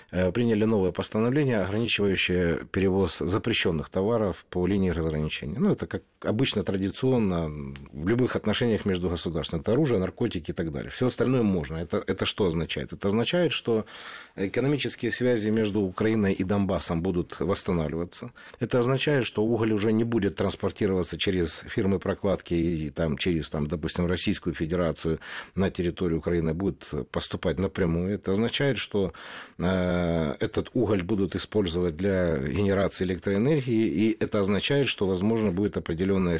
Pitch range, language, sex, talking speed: 90-115 Hz, Russian, male, 135 wpm